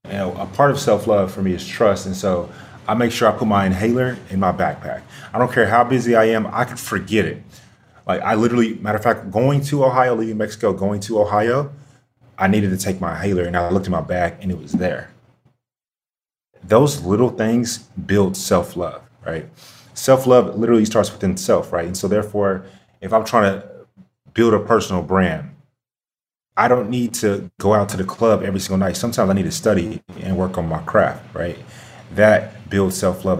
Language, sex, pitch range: English, male, 95-125 Hz